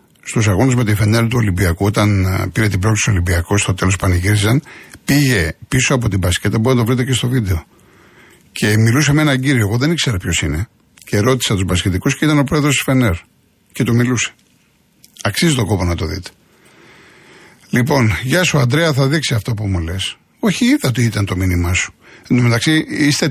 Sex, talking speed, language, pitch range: male, 195 wpm, Greek, 110-140 Hz